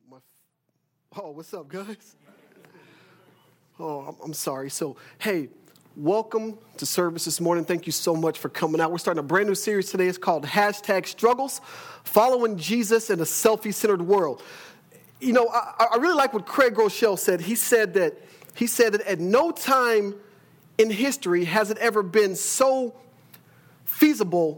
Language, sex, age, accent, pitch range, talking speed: English, male, 40-59, American, 175-255 Hz, 165 wpm